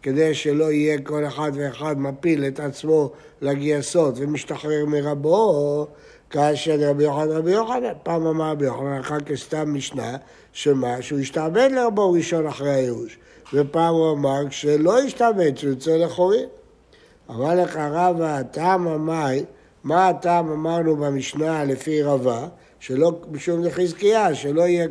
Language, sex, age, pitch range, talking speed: Hebrew, male, 60-79, 145-180 Hz, 125 wpm